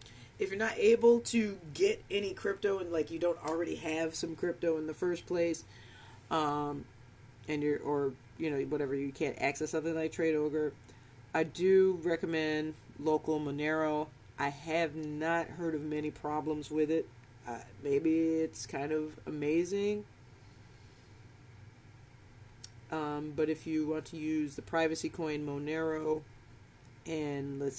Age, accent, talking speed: 30-49, American, 145 wpm